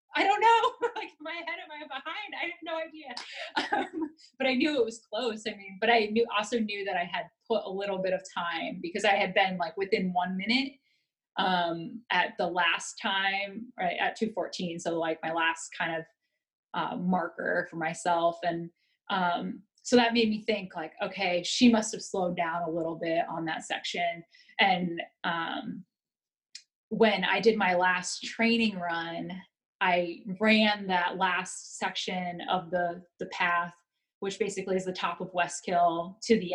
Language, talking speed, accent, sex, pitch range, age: English, 180 wpm, American, female, 175-235 Hz, 20-39